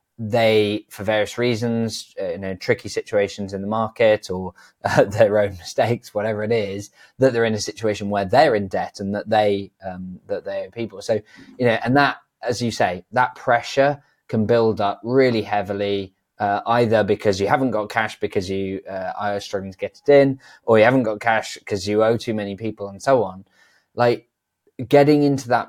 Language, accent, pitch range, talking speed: English, British, 100-120 Hz, 200 wpm